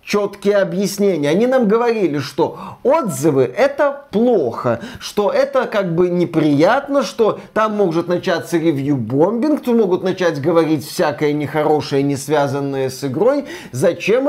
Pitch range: 170-250 Hz